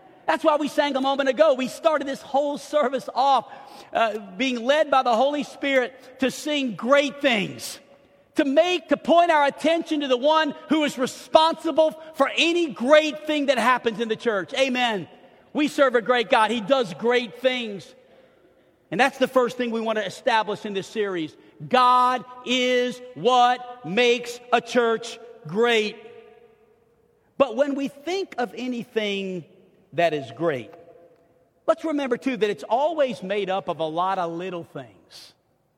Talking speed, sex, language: 165 wpm, male, English